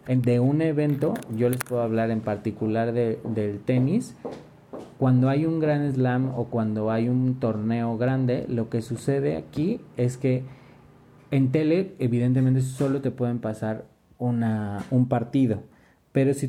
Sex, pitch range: male, 115-145 Hz